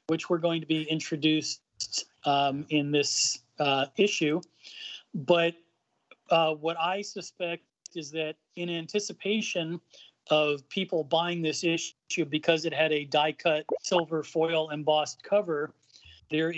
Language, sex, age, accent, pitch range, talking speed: English, male, 40-59, American, 150-190 Hz, 125 wpm